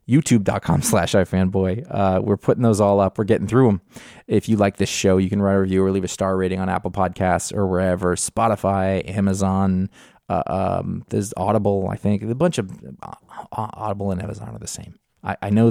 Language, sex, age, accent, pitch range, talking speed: English, male, 20-39, American, 95-115 Hz, 205 wpm